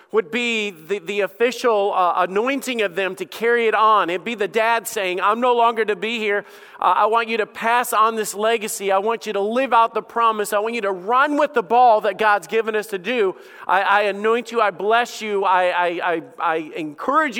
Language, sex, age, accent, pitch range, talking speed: English, male, 40-59, American, 205-275 Hz, 230 wpm